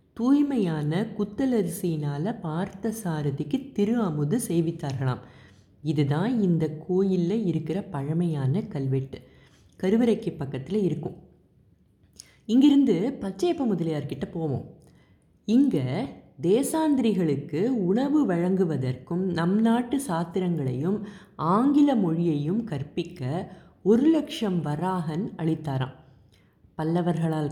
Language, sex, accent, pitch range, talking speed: Tamil, female, native, 150-200 Hz, 75 wpm